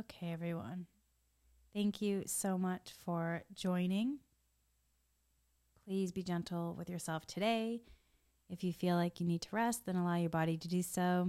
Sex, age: female, 30-49